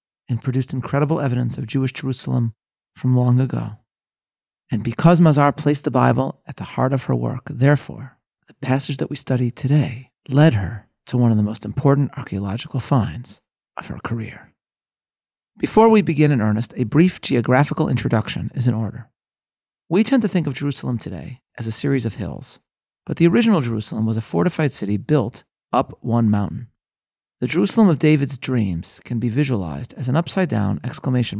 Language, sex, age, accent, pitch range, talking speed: English, male, 40-59, American, 115-150 Hz, 175 wpm